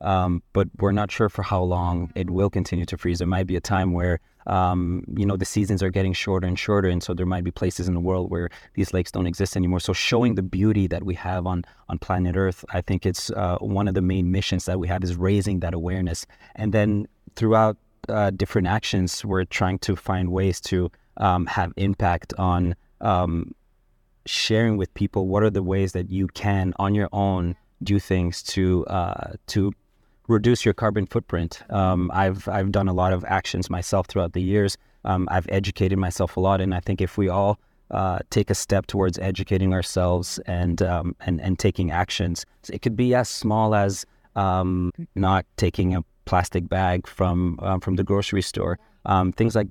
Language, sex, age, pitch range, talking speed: English, male, 30-49, 90-100 Hz, 205 wpm